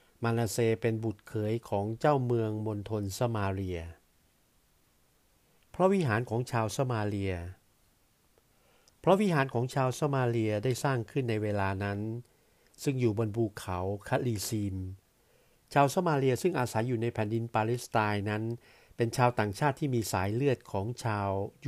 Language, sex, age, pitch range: Thai, male, 60-79, 105-125 Hz